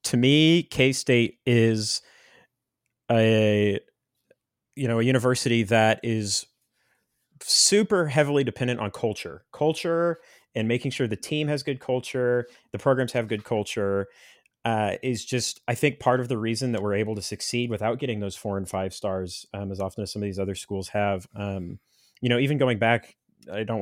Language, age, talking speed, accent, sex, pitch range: English, 30-49, 175 wpm, American, male, 105-130 Hz